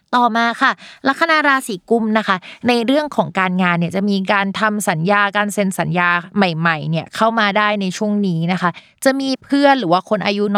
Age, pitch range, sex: 20-39, 175-225 Hz, female